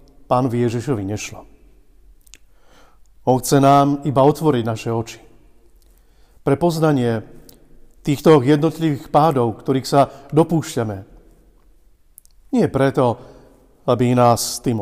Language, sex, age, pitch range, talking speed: Slovak, male, 40-59, 125-155 Hz, 90 wpm